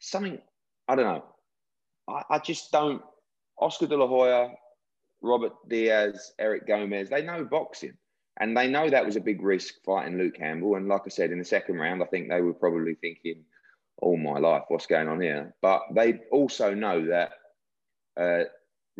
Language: English